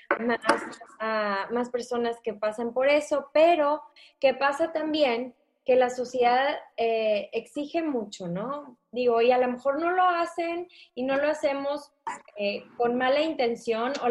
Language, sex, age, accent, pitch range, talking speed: English, female, 20-39, Mexican, 225-275 Hz, 150 wpm